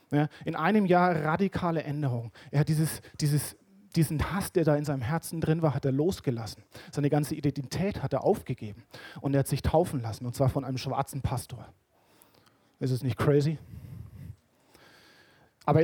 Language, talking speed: German, 160 wpm